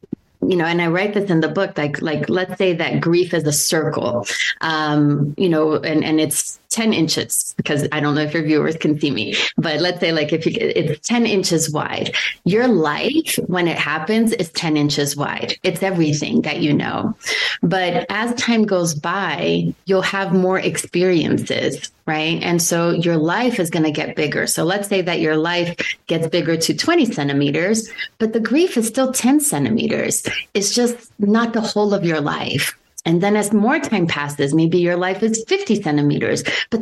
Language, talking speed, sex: English, 190 wpm, female